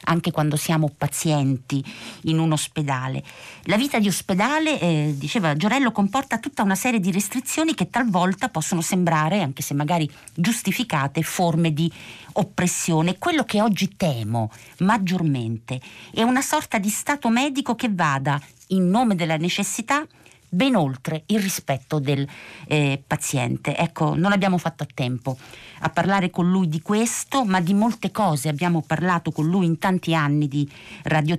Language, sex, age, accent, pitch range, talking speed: Italian, female, 50-69, native, 145-195 Hz, 155 wpm